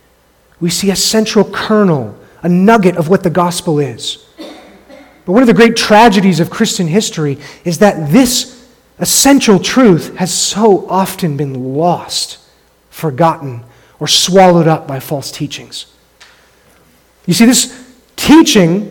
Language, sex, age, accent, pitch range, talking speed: English, male, 30-49, American, 170-225 Hz, 135 wpm